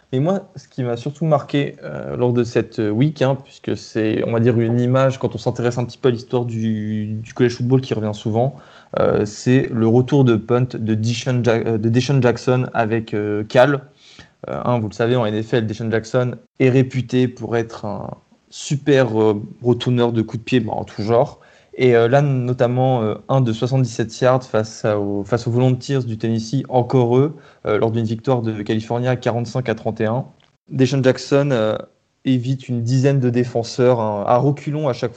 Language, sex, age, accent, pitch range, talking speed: French, male, 20-39, French, 115-130 Hz, 195 wpm